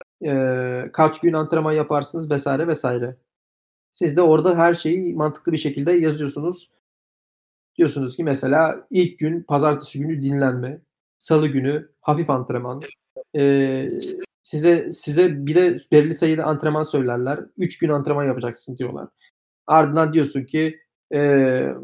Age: 40-59